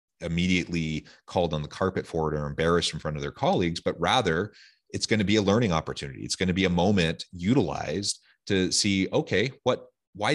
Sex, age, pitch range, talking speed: male, 30-49, 80-95 Hz, 205 wpm